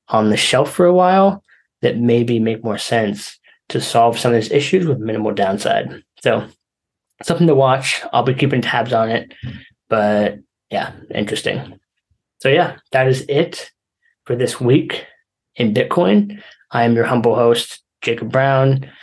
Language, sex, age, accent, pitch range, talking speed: English, male, 10-29, American, 115-150 Hz, 160 wpm